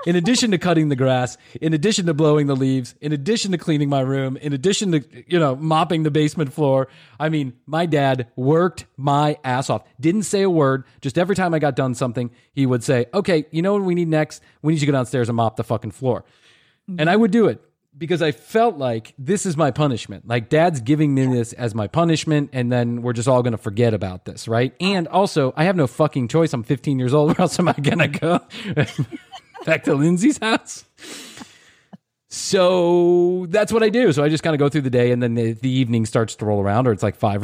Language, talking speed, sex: English, 235 wpm, male